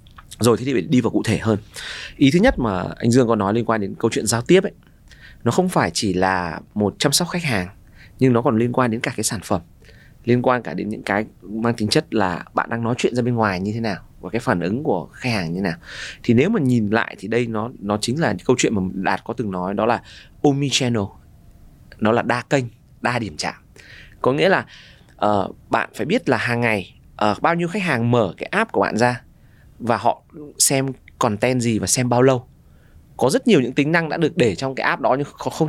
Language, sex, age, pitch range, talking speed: Vietnamese, male, 20-39, 105-140 Hz, 250 wpm